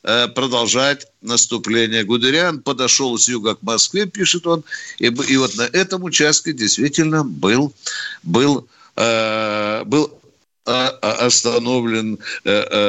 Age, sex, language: 60-79, male, Russian